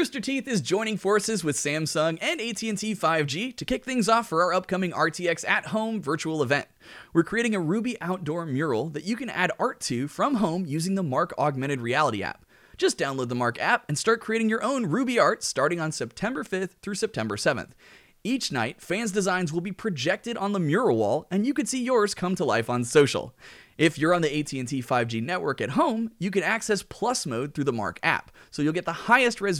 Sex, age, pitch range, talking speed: male, 30-49, 140-205 Hz, 215 wpm